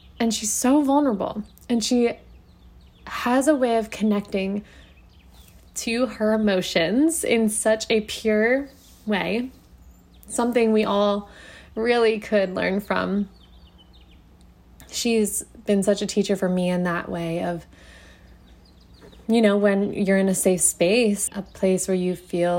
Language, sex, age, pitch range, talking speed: English, female, 20-39, 180-220 Hz, 135 wpm